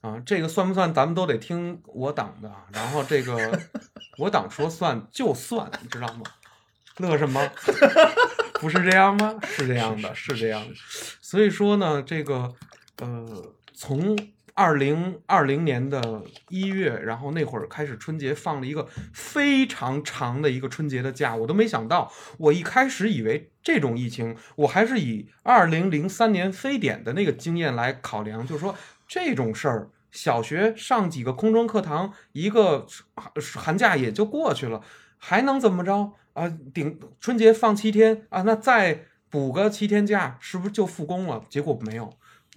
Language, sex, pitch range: Chinese, male, 130-200 Hz